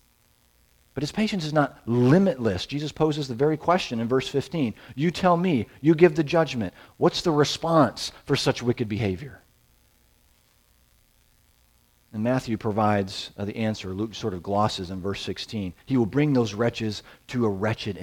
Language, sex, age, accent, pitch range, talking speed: English, male, 40-59, American, 90-125 Hz, 165 wpm